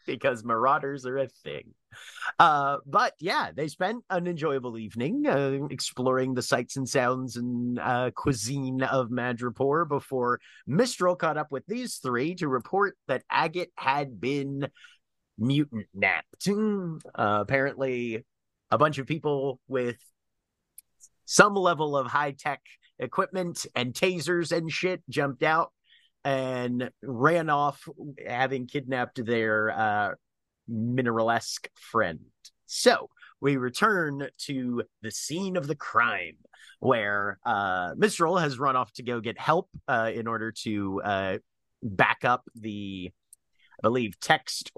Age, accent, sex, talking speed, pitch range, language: 30-49, American, male, 130 wpm, 120-155 Hz, English